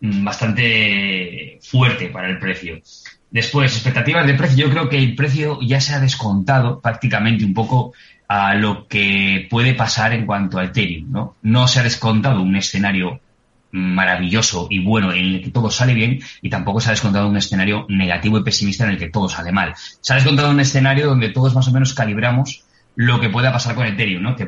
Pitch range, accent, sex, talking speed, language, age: 100-125 Hz, Spanish, male, 200 wpm, Spanish, 20-39